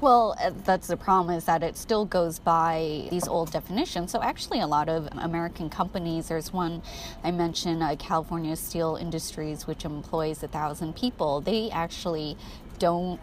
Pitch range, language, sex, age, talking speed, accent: 150-175 Hz, English, female, 20-39, 165 wpm, American